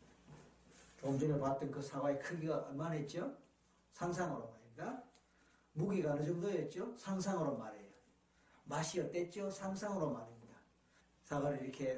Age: 50-69